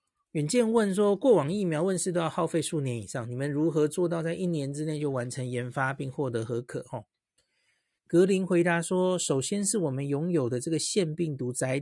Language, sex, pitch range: Chinese, male, 130-175 Hz